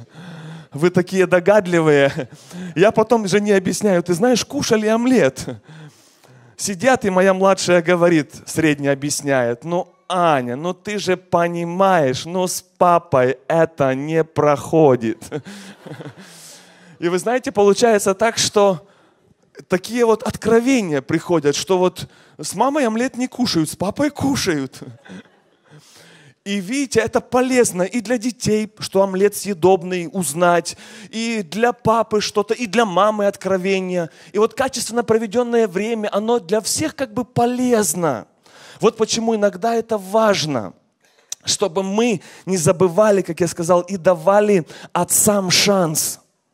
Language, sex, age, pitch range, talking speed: Russian, male, 20-39, 170-215 Hz, 125 wpm